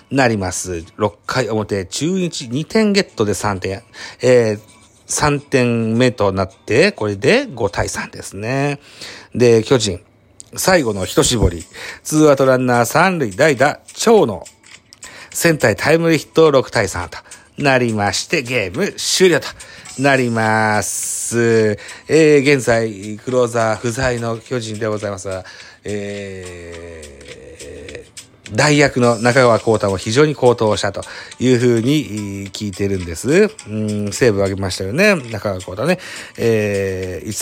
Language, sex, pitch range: Japanese, male, 100-140 Hz